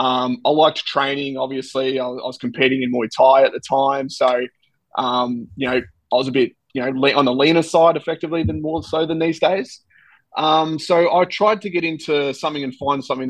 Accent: Australian